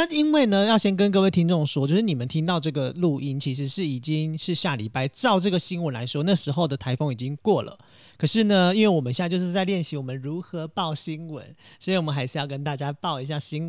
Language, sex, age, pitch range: Chinese, male, 40-59, 145-205 Hz